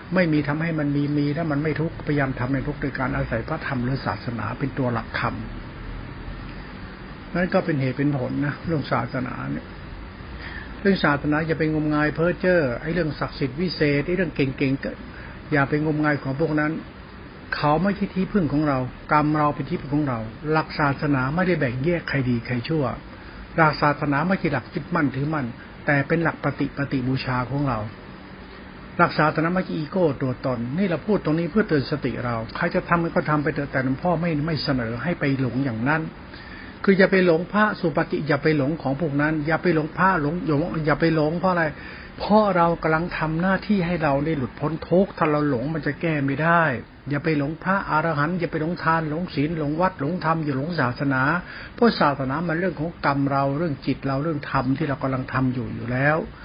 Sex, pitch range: male, 135-165 Hz